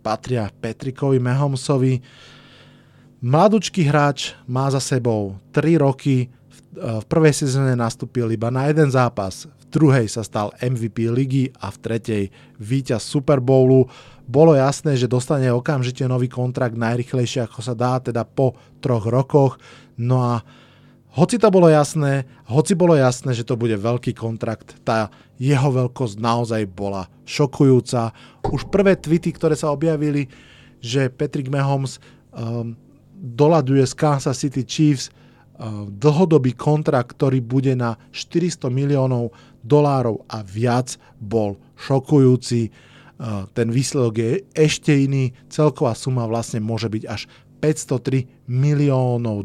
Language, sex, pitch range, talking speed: Slovak, male, 120-140 Hz, 130 wpm